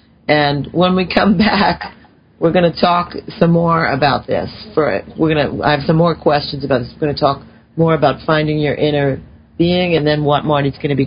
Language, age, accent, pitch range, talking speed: English, 50-69, American, 140-175 Hz, 220 wpm